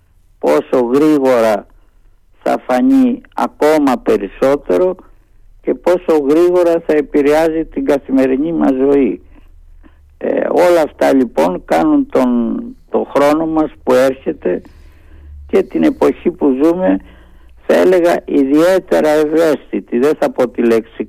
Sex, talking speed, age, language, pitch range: male, 115 wpm, 60-79, Greek, 115-155 Hz